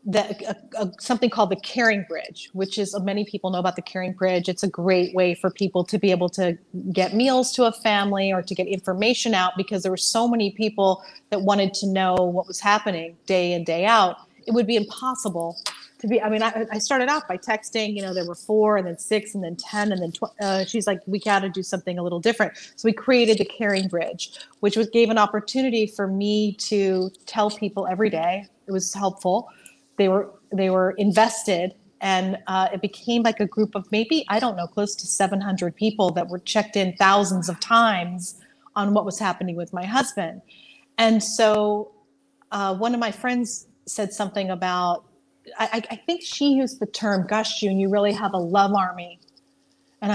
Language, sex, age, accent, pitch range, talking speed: English, female, 30-49, American, 185-220 Hz, 210 wpm